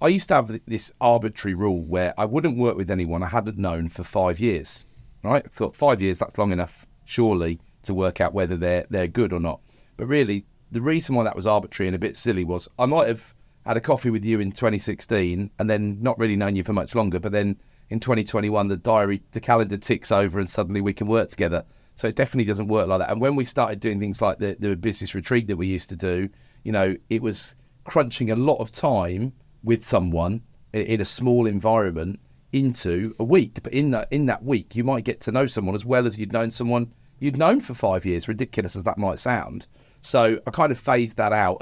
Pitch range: 95-125 Hz